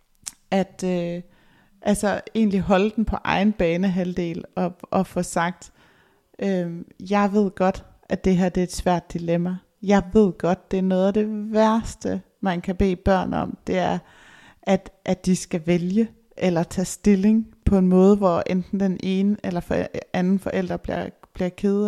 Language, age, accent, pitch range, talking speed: Danish, 30-49, native, 185-215 Hz, 160 wpm